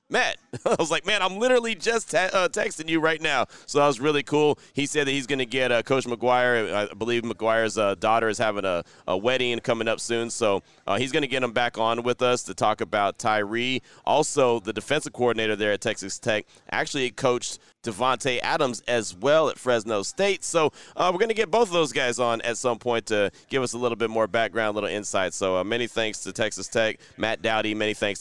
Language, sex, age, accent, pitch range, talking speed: English, male, 30-49, American, 110-135 Hz, 230 wpm